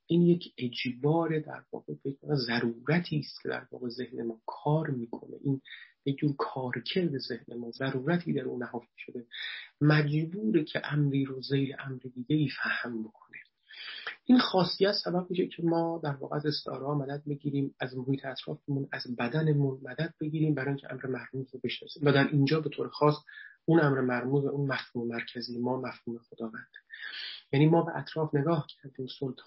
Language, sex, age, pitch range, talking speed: Persian, male, 40-59, 130-165 Hz, 160 wpm